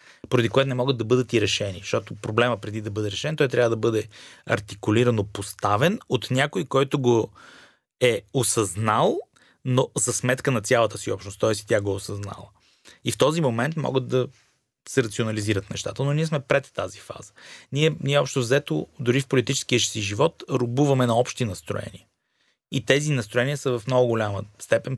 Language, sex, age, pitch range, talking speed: Bulgarian, male, 30-49, 105-135 Hz, 180 wpm